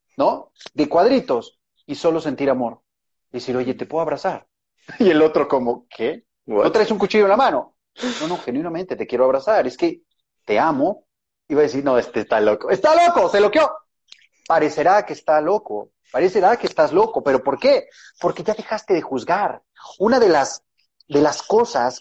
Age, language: 30-49, Spanish